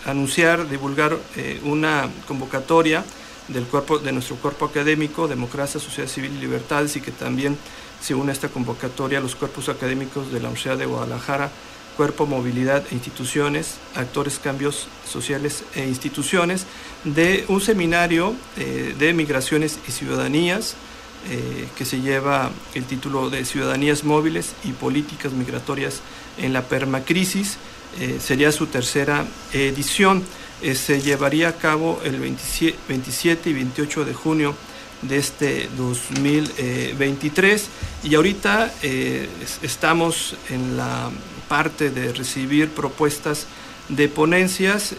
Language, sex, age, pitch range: Spanish, male, 50-69, 130-155 Hz